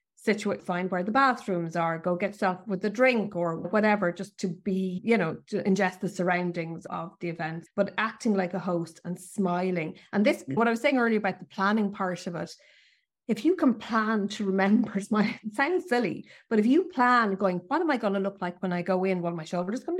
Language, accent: English, Irish